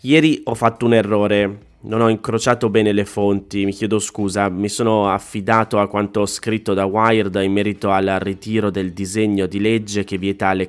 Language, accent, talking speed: Italian, native, 190 wpm